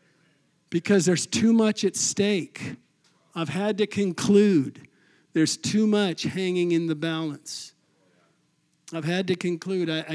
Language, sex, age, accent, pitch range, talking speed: English, male, 50-69, American, 155-185 Hz, 130 wpm